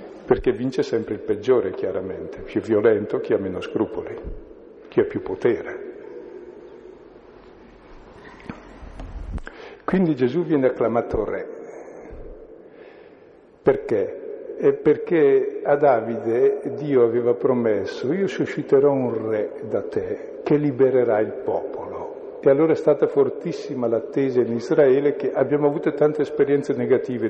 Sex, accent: male, native